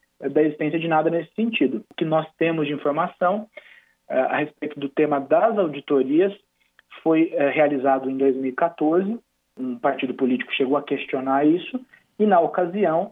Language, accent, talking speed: Portuguese, Brazilian, 155 wpm